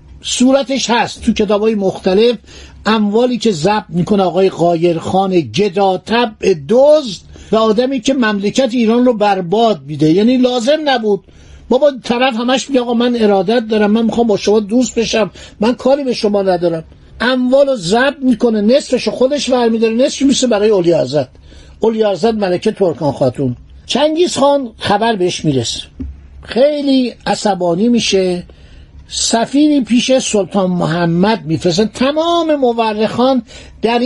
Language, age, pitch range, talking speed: Persian, 60-79, 195-255 Hz, 130 wpm